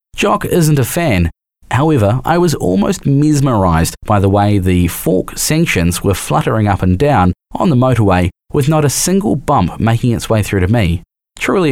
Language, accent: English, Australian